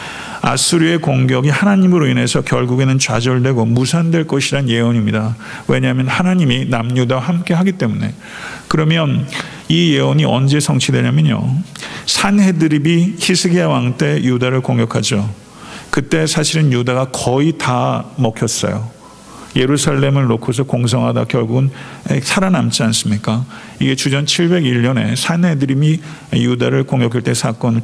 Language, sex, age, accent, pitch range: Korean, male, 50-69, native, 125-160 Hz